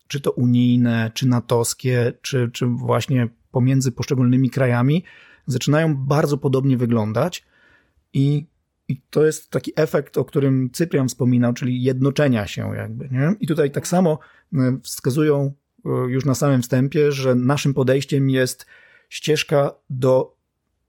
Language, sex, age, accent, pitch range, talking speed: Polish, male, 30-49, native, 120-140 Hz, 130 wpm